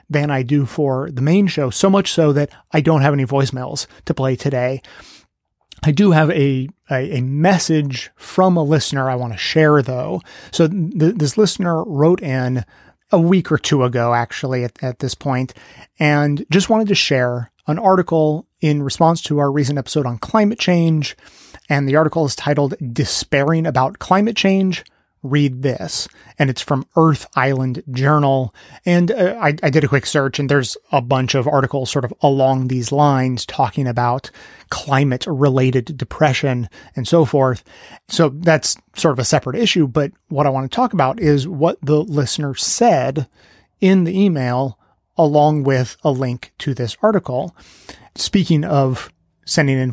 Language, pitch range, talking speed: English, 130-160 Hz, 170 wpm